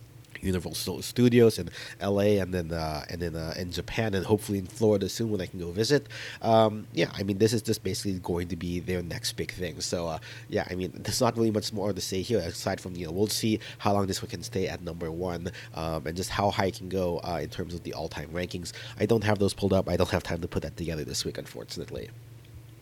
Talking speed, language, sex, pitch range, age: 255 wpm, English, male, 95-115 Hz, 30-49